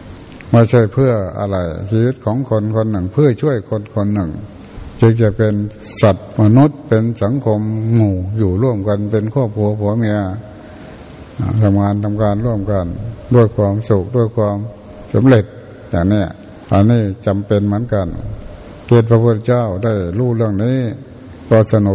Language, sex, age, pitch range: Thai, male, 60-79, 100-120 Hz